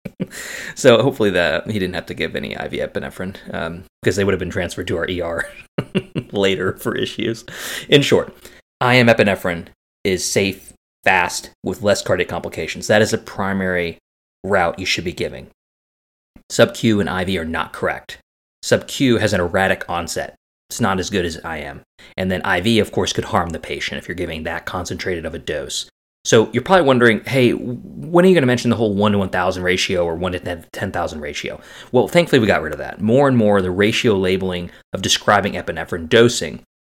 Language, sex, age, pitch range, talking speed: English, male, 30-49, 90-115 Hz, 190 wpm